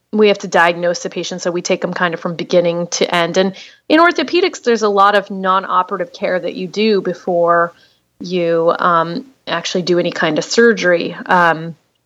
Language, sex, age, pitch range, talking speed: English, female, 30-49, 175-205 Hz, 190 wpm